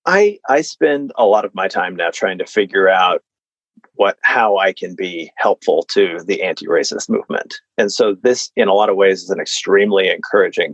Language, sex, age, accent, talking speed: English, male, 30-49, American, 195 wpm